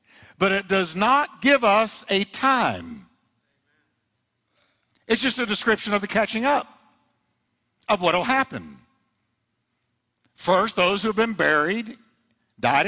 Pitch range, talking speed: 155-230 Hz, 125 wpm